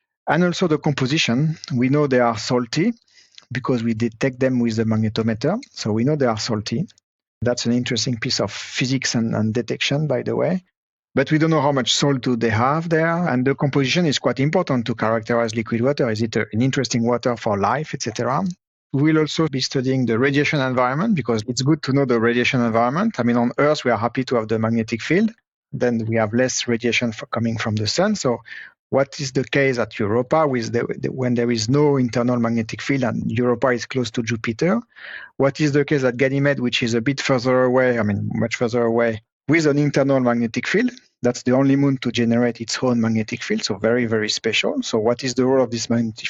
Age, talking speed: 40-59, 215 wpm